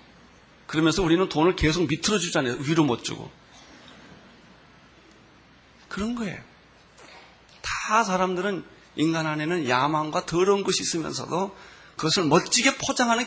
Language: Korean